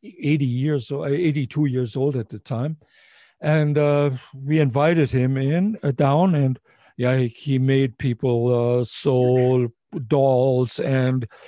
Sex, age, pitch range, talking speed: male, 50-69, 130-155 Hz, 135 wpm